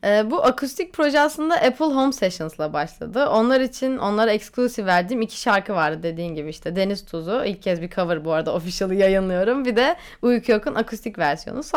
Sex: female